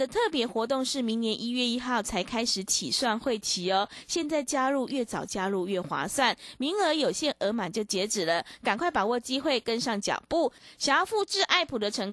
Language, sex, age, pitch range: Chinese, female, 20-39, 205-290 Hz